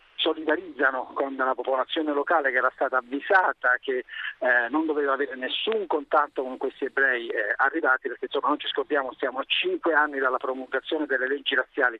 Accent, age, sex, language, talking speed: native, 50-69, male, Italian, 175 wpm